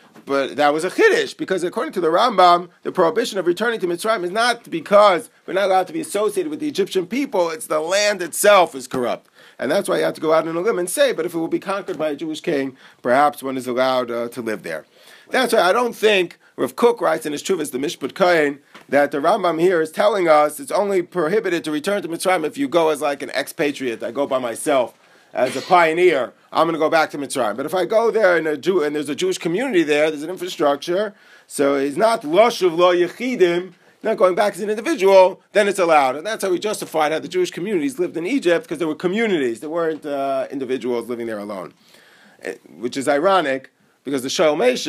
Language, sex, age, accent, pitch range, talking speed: English, male, 40-59, American, 145-200 Hz, 235 wpm